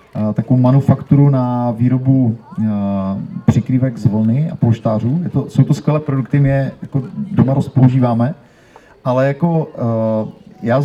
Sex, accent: male, native